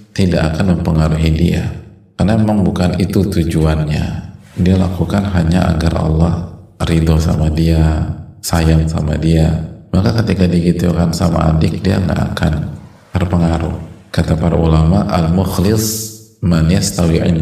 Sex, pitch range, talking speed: male, 80-100 Hz, 115 wpm